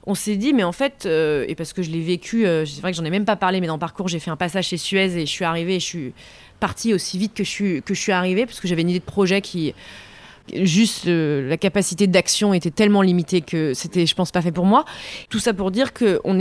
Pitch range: 180-220 Hz